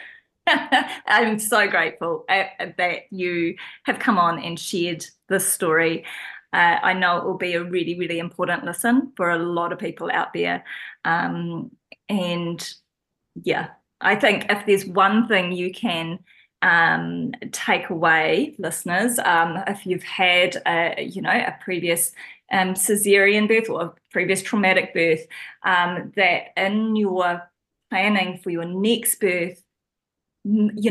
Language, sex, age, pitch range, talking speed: English, female, 20-39, 170-205 Hz, 135 wpm